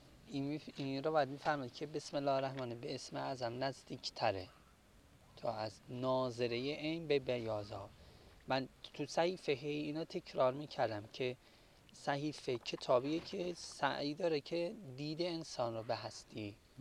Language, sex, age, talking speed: English, male, 30-49, 145 wpm